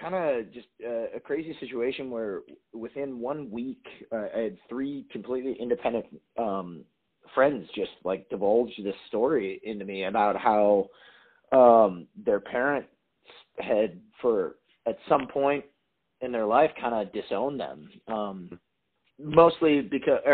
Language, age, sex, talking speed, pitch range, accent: English, 30-49, male, 135 wpm, 120-175 Hz, American